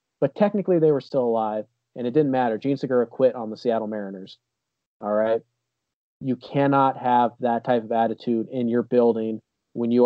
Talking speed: 185 wpm